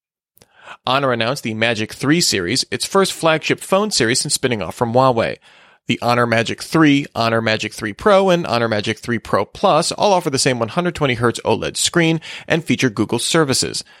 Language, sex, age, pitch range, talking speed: English, male, 30-49, 110-150 Hz, 175 wpm